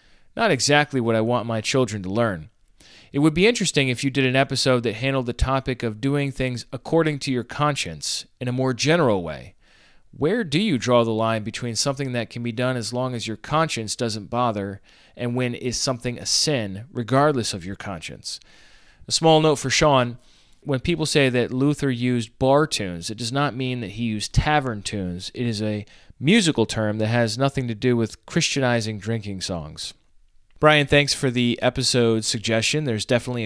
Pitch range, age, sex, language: 110-140 Hz, 30-49, male, English